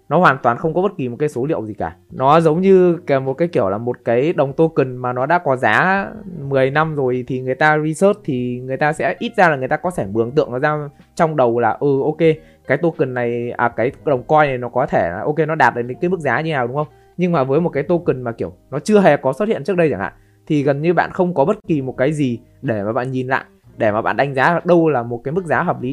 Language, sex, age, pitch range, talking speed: Vietnamese, male, 20-39, 125-175 Hz, 290 wpm